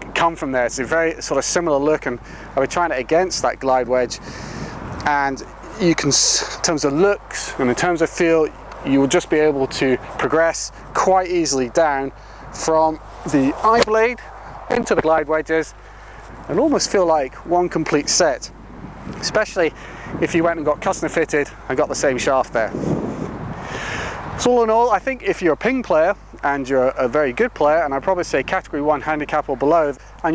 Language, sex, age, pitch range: English, male, 30-49, 140-180 Hz